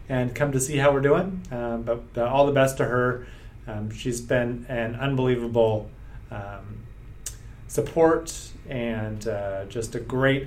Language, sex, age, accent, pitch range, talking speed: English, male, 30-49, American, 115-145 Hz, 155 wpm